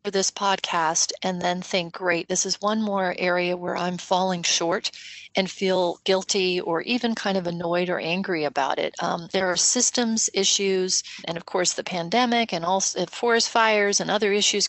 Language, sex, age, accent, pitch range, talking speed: English, female, 40-59, American, 175-205 Hz, 180 wpm